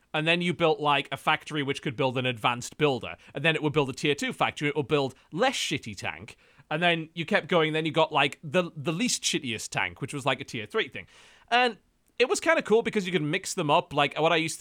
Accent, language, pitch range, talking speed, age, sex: British, English, 140-185 Hz, 265 wpm, 30-49, male